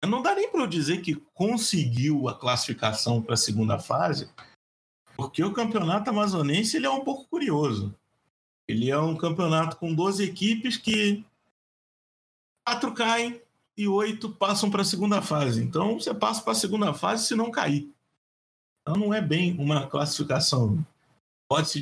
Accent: Brazilian